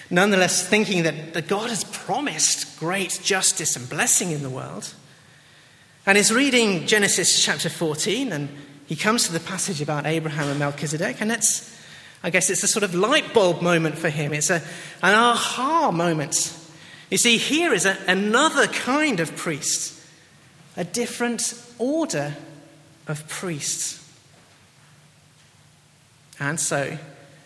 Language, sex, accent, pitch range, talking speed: English, male, British, 150-200 Hz, 140 wpm